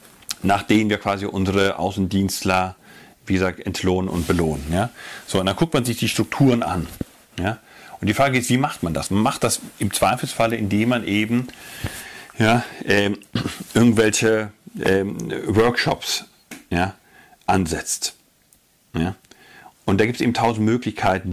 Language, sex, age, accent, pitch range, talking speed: German, male, 40-59, German, 95-125 Hz, 145 wpm